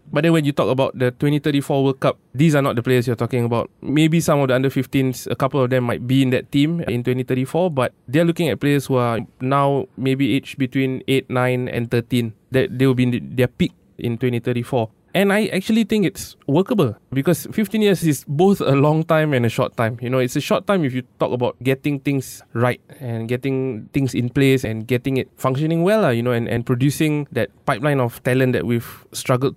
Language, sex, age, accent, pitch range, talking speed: English, male, 20-39, Malaysian, 125-155 Hz, 225 wpm